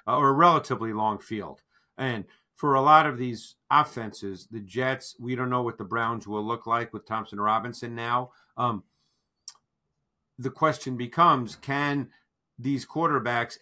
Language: English